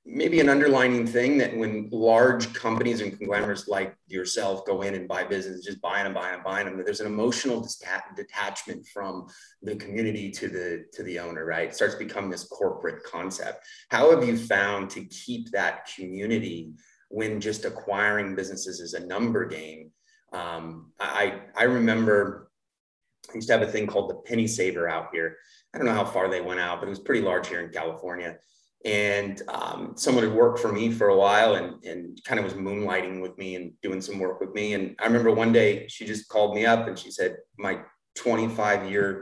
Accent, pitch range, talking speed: American, 95-120 Hz, 200 wpm